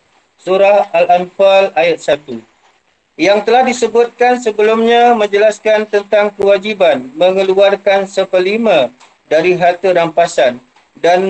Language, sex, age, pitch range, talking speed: Malay, male, 40-59, 175-210 Hz, 90 wpm